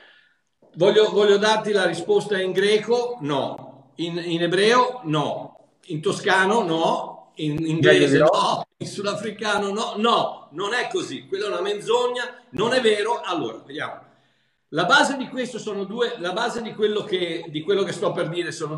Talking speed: 165 wpm